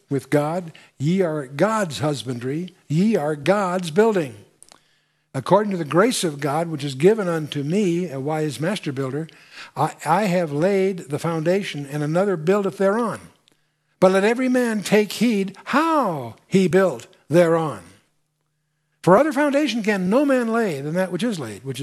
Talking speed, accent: 160 wpm, American